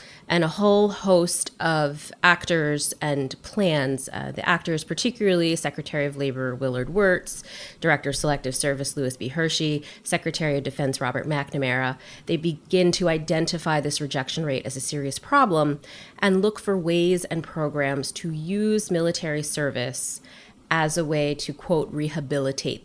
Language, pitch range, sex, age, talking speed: English, 140-170 Hz, female, 30-49, 145 wpm